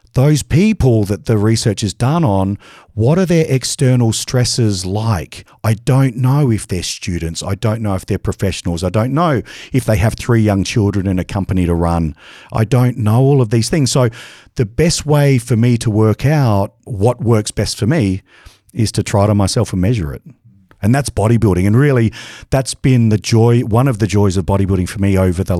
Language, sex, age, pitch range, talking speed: English, male, 40-59, 95-125 Hz, 210 wpm